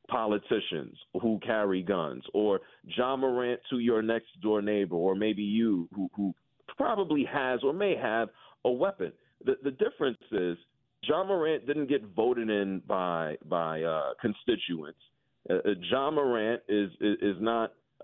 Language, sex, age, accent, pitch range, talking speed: English, male, 40-59, American, 110-155 Hz, 150 wpm